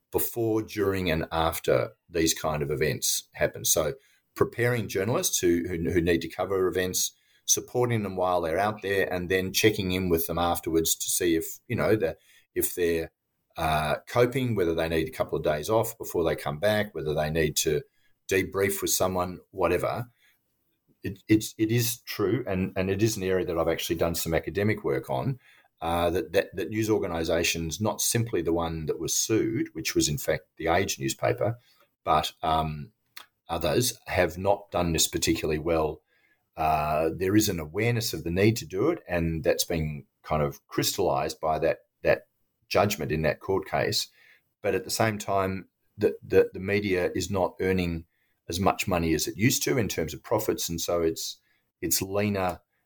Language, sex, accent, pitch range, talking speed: English, male, Australian, 80-110 Hz, 185 wpm